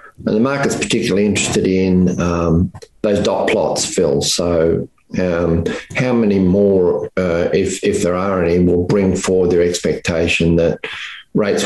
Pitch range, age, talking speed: 85-95 Hz, 50-69, 150 wpm